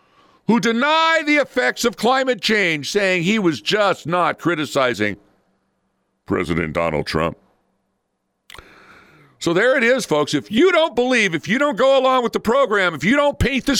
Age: 50-69